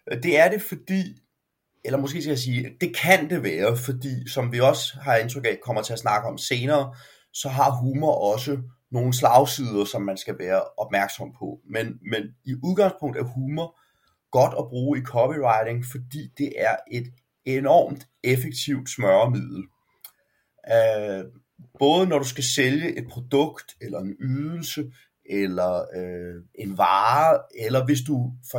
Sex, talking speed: male, 155 wpm